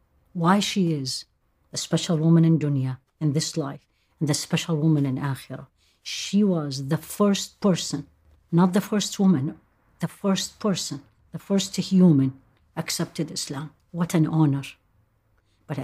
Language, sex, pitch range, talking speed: English, female, 135-175 Hz, 145 wpm